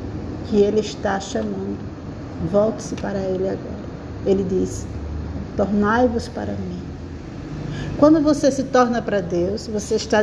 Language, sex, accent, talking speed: Portuguese, female, Brazilian, 125 wpm